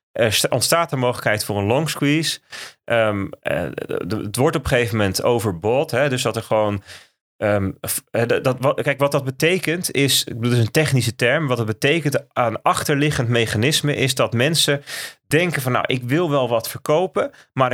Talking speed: 185 wpm